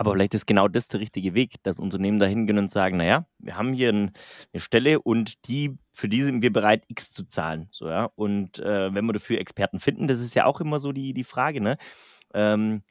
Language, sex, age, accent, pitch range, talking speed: German, male, 30-49, German, 105-130 Hz, 215 wpm